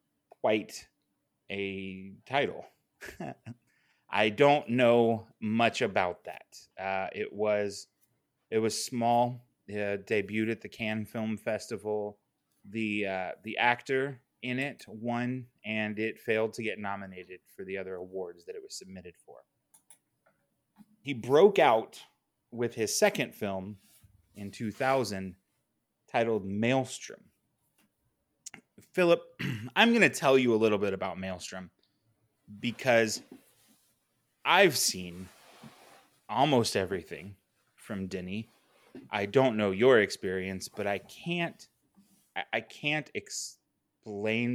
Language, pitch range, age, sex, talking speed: English, 100-130 Hz, 30-49, male, 115 wpm